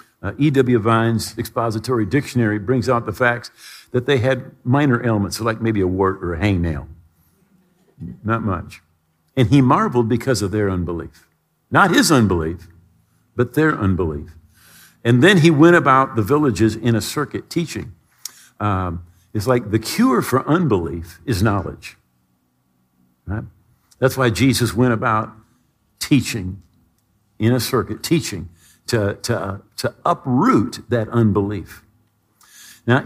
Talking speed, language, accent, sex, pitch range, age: 140 wpm, English, American, male, 100-130 Hz, 50-69